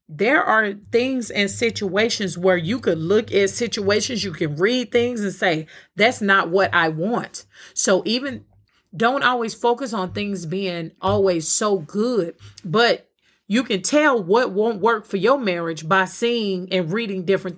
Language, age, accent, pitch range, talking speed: English, 30-49, American, 180-240 Hz, 165 wpm